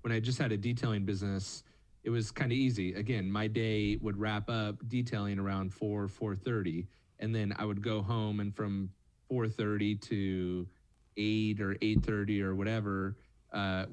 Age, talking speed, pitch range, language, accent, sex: 30-49, 160 wpm, 105-130 Hz, English, American, male